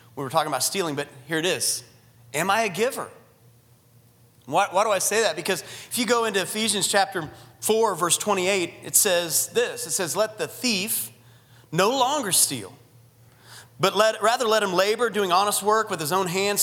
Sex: male